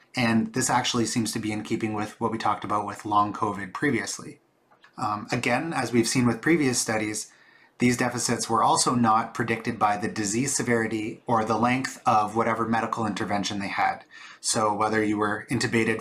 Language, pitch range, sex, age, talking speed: English, 110-120 Hz, male, 30-49, 185 wpm